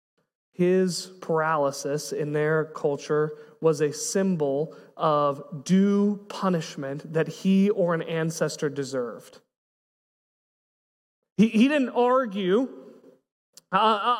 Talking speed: 95 wpm